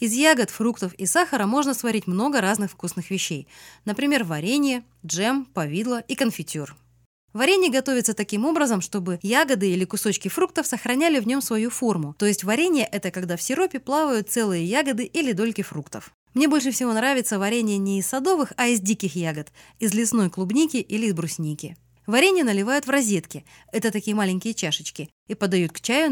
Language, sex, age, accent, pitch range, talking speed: Russian, female, 20-39, native, 175-260 Hz, 170 wpm